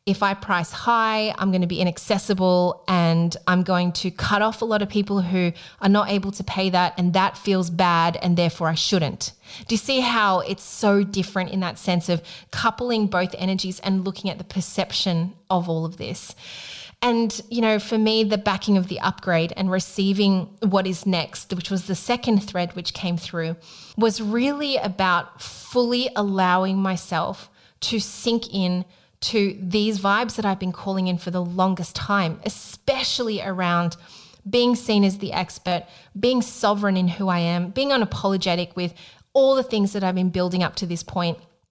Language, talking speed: English, 185 wpm